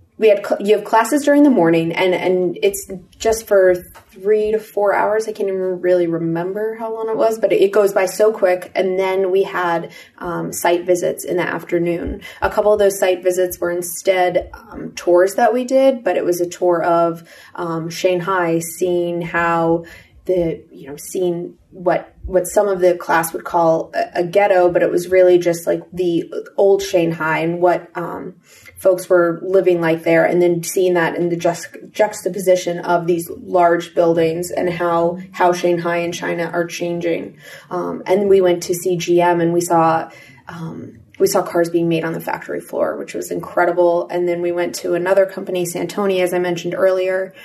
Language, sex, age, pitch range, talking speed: English, female, 20-39, 170-195 Hz, 190 wpm